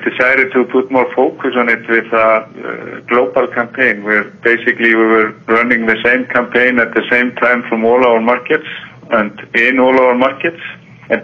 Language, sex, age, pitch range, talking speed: English, male, 50-69, 115-130 Hz, 180 wpm